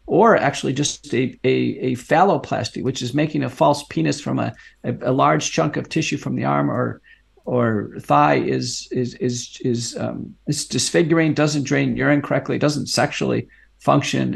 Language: English